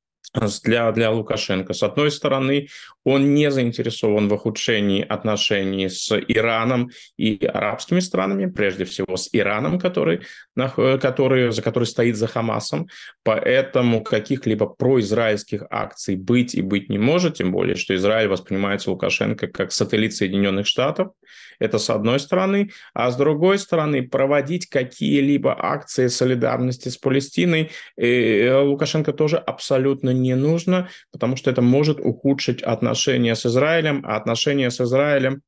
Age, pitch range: 20-39, 110-145 Hz